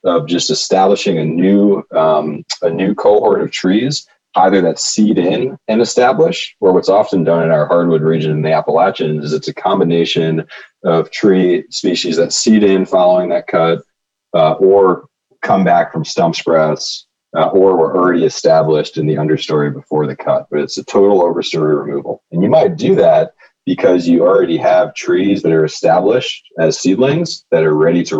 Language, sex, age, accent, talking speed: English, male, 30-49, American, 175 wpm